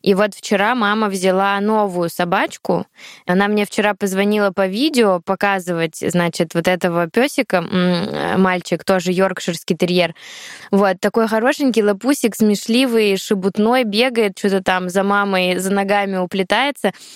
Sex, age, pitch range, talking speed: female, 20-39, 190-225 Hz, 125 wpm